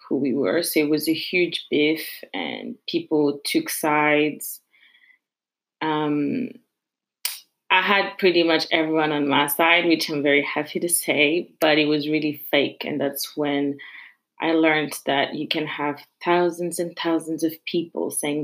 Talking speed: 155 wpm